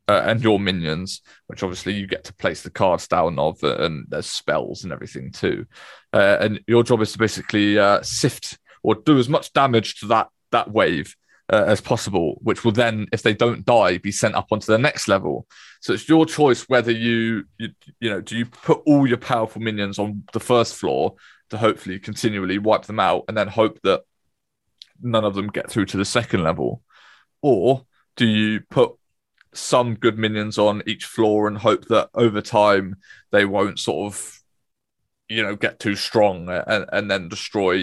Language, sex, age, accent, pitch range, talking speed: English, male, 20-39, British, 100-120 Hz, 195 wpm